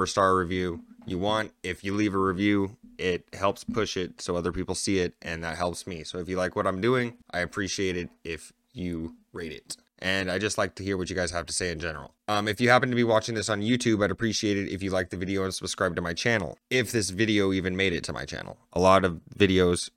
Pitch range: 85-100 Hz